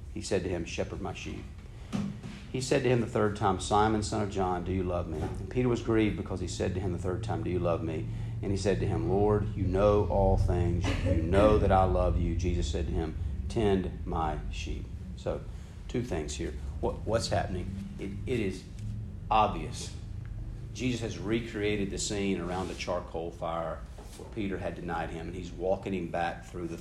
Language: English